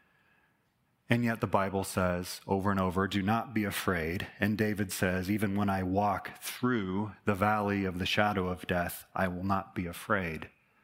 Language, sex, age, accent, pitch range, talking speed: English, male, 30-49, American, 95-120 Hz, 175 wpm